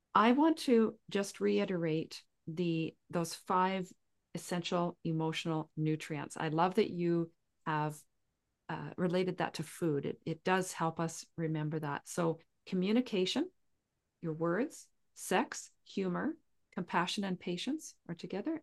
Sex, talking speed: female, 125 wpm